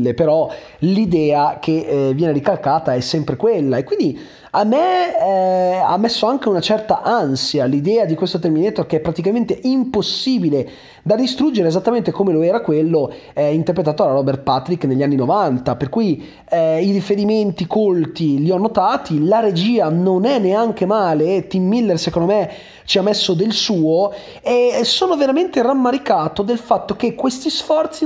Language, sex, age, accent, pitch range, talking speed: Italian, male, 30-49, native, 170-240 Hz, 165 wpm